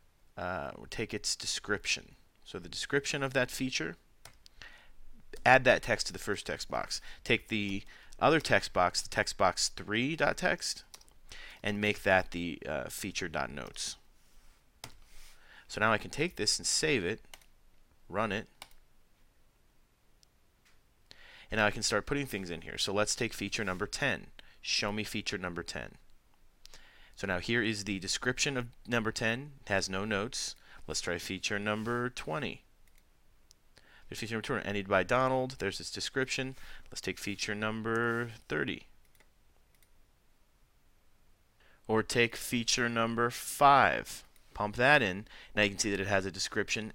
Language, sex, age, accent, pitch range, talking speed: English, male, 30-49, American, 95-120 Hz, 150 wpm